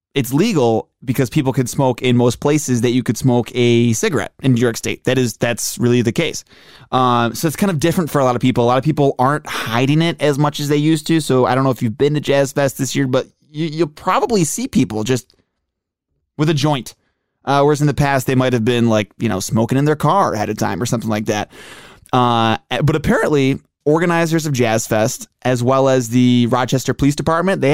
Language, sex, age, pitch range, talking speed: English, male, 20-39, 115-155 Hz, 230 wpm